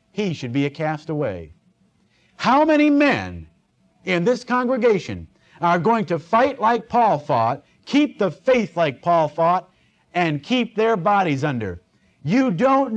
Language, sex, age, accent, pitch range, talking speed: English, male, 50-69, American, 135-225 Hz, 145 wpm